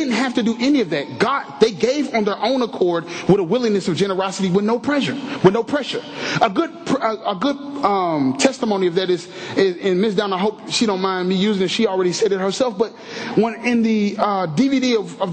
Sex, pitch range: male, 200-260 Hz